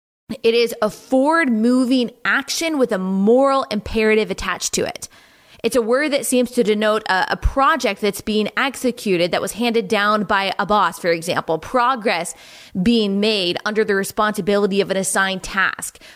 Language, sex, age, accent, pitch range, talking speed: English, female, 20-39, American, 200-250 Hz, 165 wpm